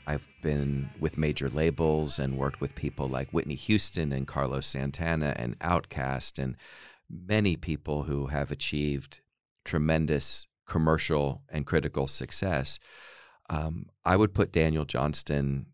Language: English